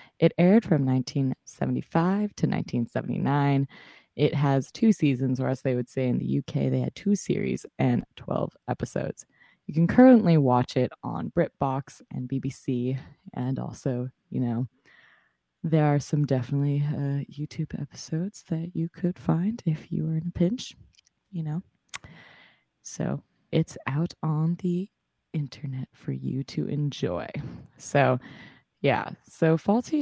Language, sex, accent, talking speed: English, female, American, 140 wpm